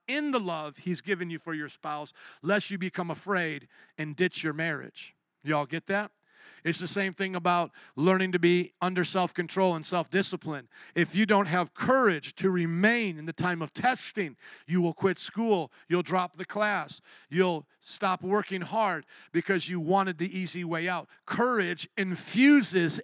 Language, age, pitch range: English, 40-59, 165-195 Hz